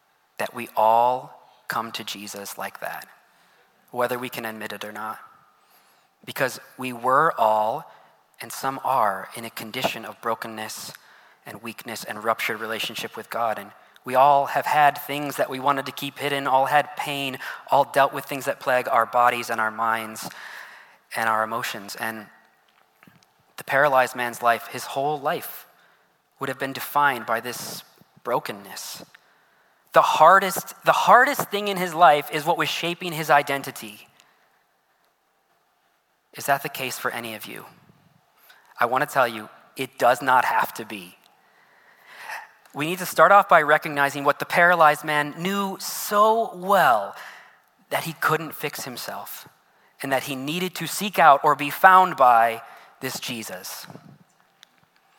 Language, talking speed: English, 155 wpm